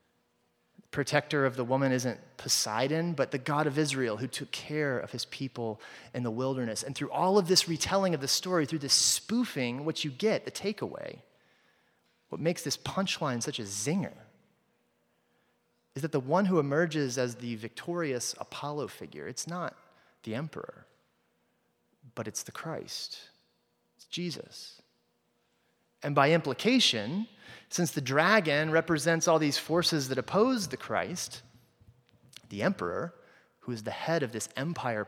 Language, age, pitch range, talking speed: English, 30-49, 120-160 Hz, 150 wpm